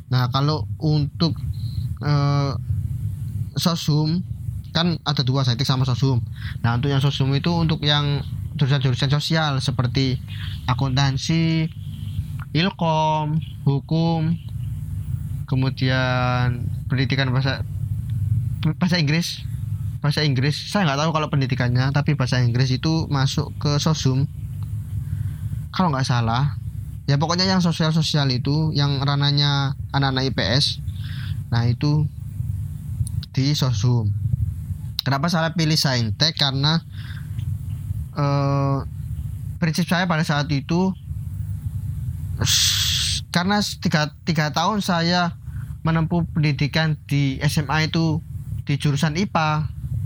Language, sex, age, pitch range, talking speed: Indonesian, male, 20-39, 120-155 Hz, 100 wpm